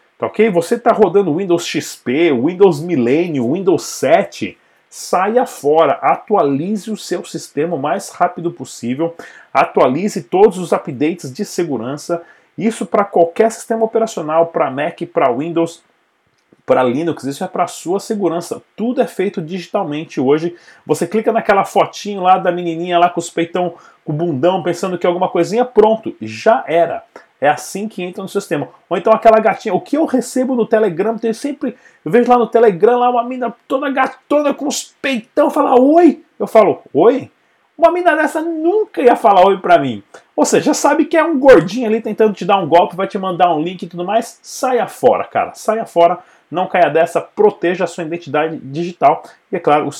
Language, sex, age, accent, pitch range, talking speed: Portuguese, male, 30-49, Brazilian, 170-235 Hz, 185 wpm